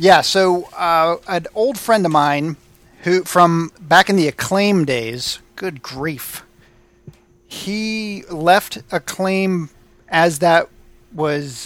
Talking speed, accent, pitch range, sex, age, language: 120 wpm, American, 145-175 Hz, male, 40-59, English